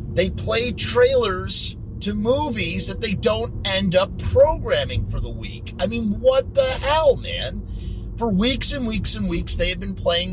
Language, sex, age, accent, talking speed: English, male, 30-49, American, 175 wpm